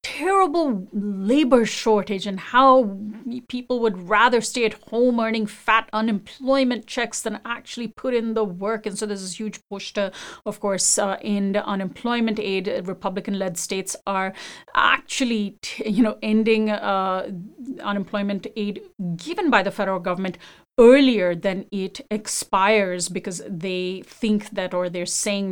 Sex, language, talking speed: female, English, 140 wpm